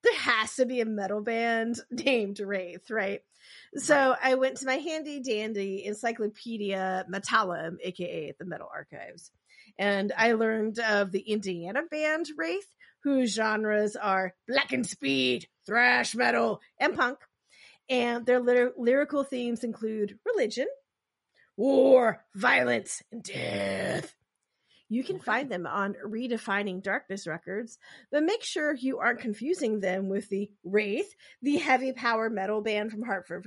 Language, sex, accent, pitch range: English, female, American, 200-255 Hz